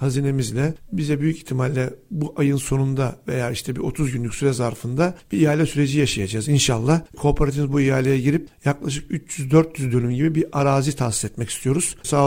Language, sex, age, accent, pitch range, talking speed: Turkish, male, 60-79, native, 130-160 Hz, 160 wpm